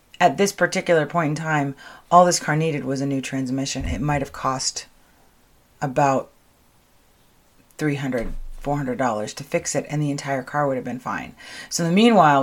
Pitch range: 135-175 Hz